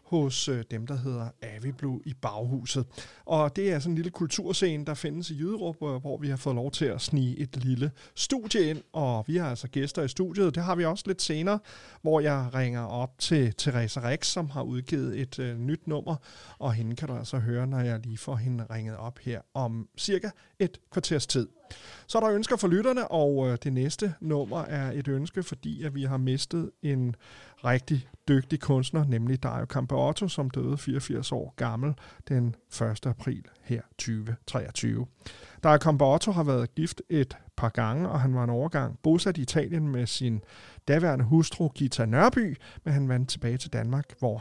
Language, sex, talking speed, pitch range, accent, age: Danish, male, 190 wpm, 120-160 Hz, native, 40-59